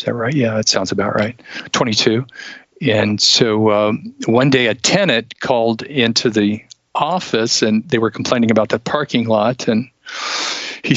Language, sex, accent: English, male, American